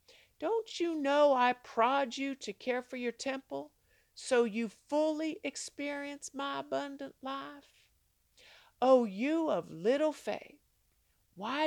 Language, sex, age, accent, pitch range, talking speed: English, female, 50-69, American, 210-310 Hz, 125 wpm